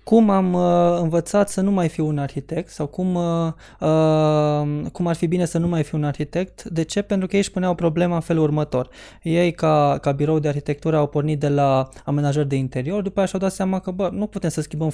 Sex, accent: male, native